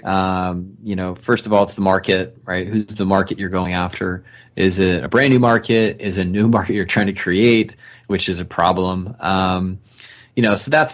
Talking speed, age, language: 220 wpm, 20-39, English